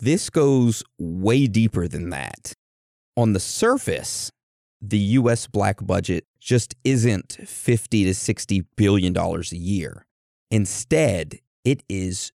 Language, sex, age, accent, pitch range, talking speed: English, male, 30-49, American, 90-120 Hz, 115 wpm